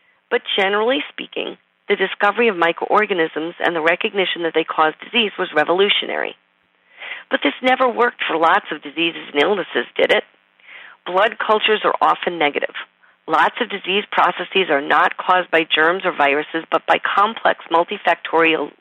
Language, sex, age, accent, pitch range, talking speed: English, female, 40-59, American, 165-215 Hz, 155 wpm